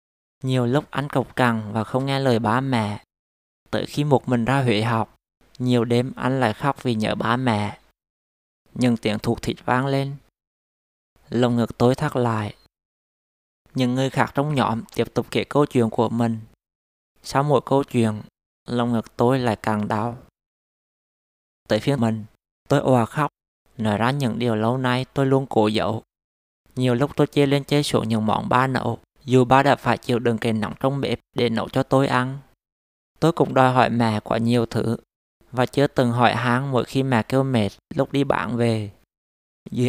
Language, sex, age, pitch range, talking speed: Vietnamese, male, 20-39, 110-130 Hz, 190 wpm